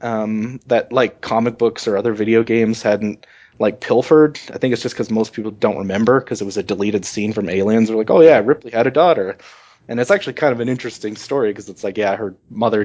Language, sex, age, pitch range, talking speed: English, male, 20-39, 100-125 Hz, 240 wpm